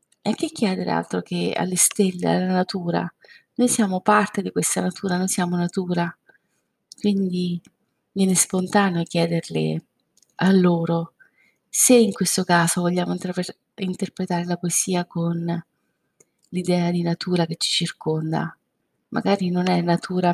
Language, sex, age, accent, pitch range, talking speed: Italian, female, 30-49, native, 170-200 Hz, 130 wpm